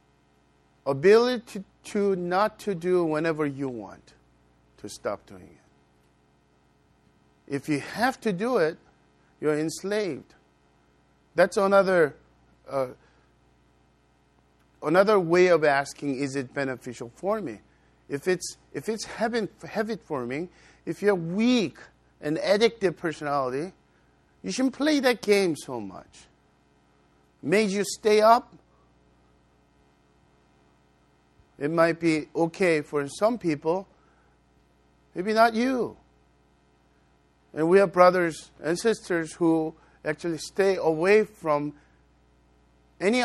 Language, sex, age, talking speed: English, male, 50-69, 110 wpm